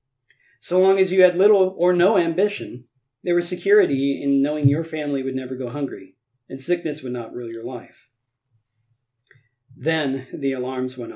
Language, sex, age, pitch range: English, male, 40-59, 125-150 Hz